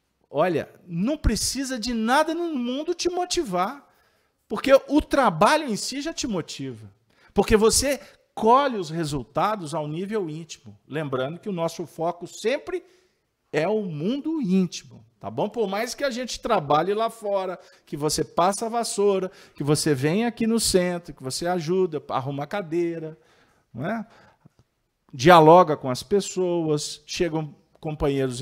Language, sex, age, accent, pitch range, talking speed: Portuguese, male, 50-69, Brazilian, 140-225 Hz, 150 wpm